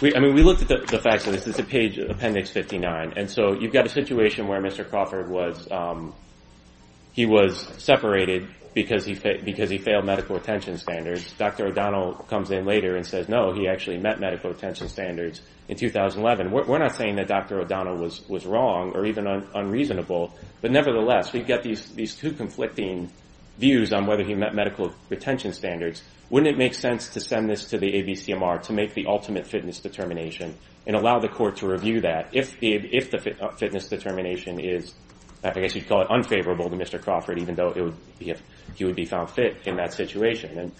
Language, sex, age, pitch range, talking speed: English, male, 30-49, 90-110 Hz, 200 wpm